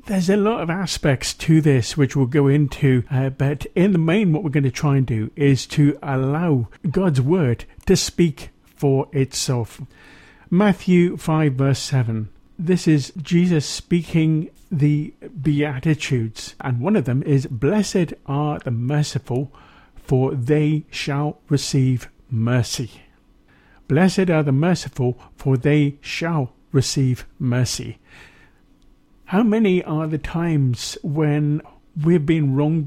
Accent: British